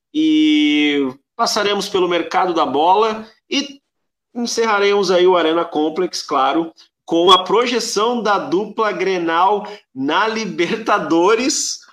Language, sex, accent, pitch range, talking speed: Portuguese, male, Brazilian, 165-245 Hz, 105 wpm